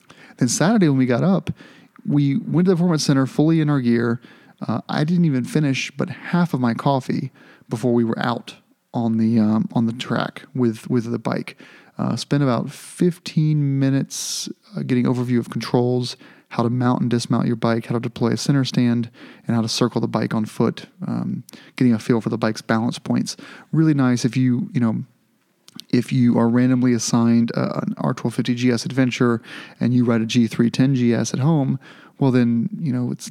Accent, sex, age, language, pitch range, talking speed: American, male, 30-49, English, 115-135 Hz, 195 wpm